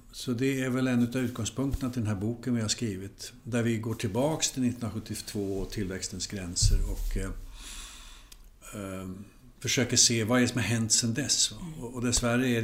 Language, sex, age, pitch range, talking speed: Swedish, male, 60-79, 95-120 Hz, 170 wpm